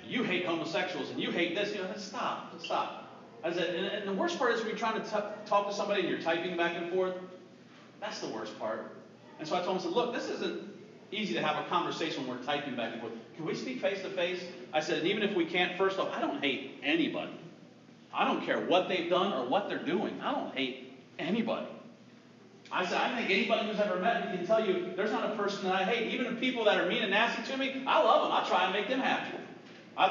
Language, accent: English, American